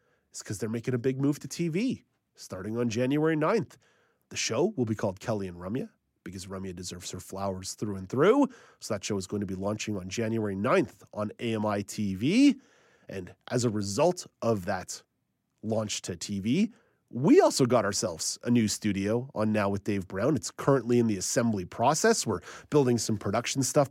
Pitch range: 105-145 Hz